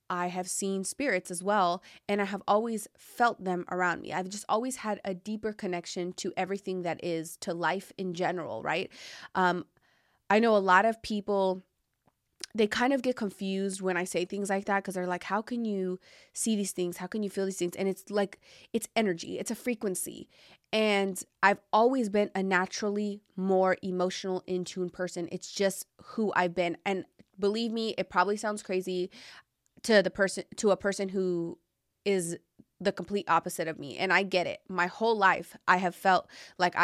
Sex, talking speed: female, 190 wpm